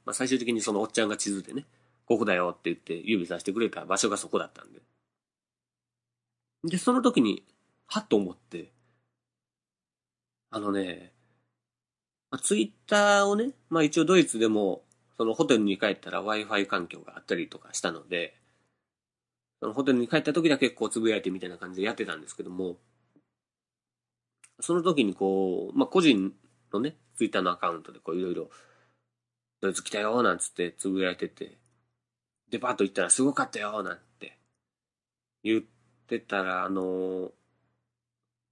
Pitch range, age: 100-120 Hz, 30-49